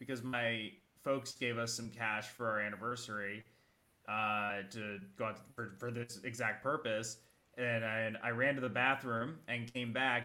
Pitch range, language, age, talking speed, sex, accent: 110-130 Hz, English, 20-39, 170 wpm, male, American